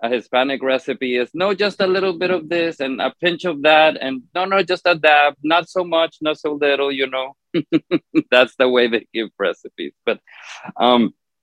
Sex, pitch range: male, 105-135 Hz